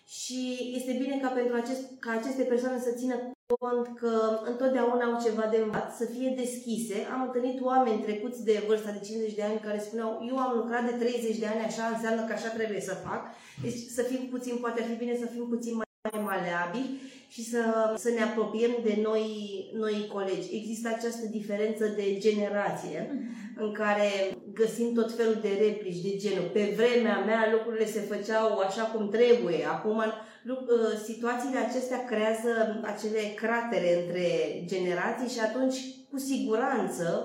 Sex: female